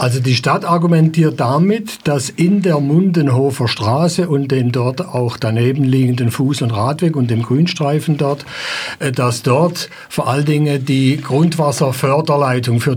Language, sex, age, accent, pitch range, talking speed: German, male, 60-79, German, 125-165 Hz, 145 wpm